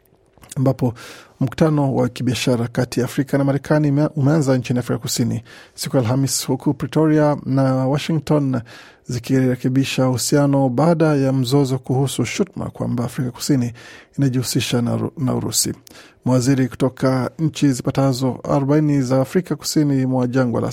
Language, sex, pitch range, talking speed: Swahili, male, 125-145 Hz, 120 wpm